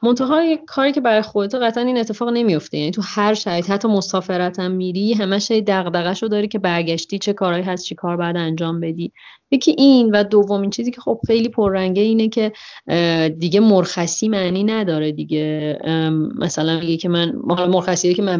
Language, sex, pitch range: Persian, female, 170-210 Hz